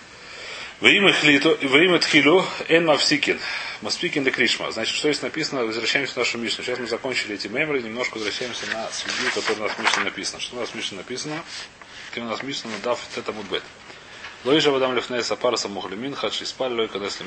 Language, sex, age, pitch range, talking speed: Russian, male, 30-49, 120-150 Hz, 175 wpm